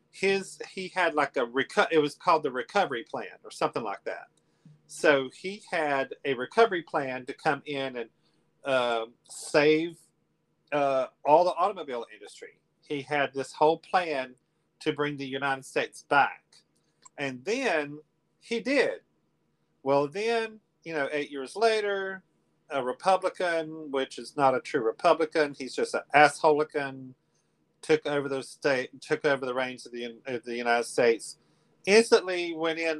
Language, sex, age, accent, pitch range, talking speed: English, male, 40-59, American, 135-175 Hz, 150 wpm